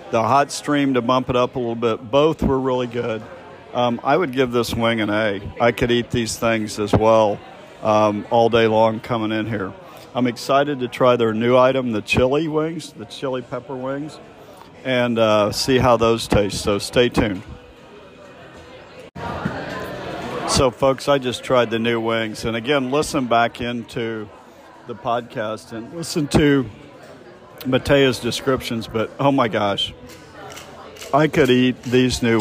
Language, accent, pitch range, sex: English, American, 110-130 Hz, male